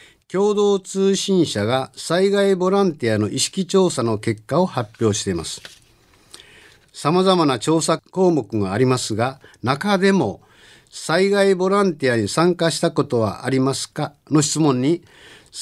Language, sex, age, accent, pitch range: Japanese, male, 50-69, native, 115-180 Hz